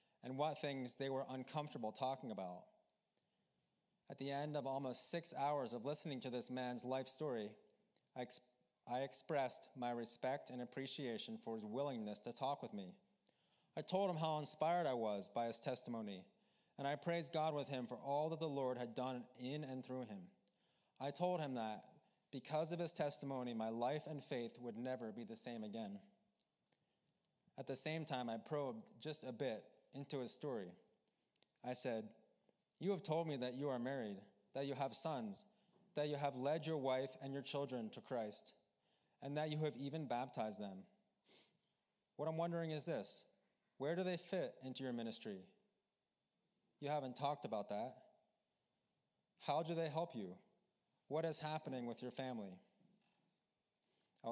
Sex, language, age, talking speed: male, English, 20-39, 170 wpm